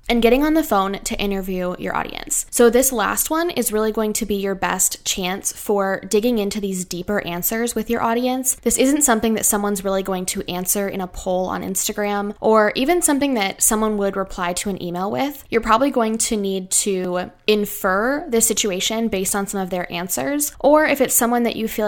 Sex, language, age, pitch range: female, English, 10-29, 190-235 Hz